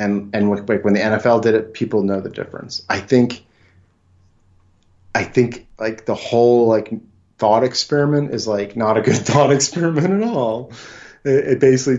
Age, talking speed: 30-49, 165 wpm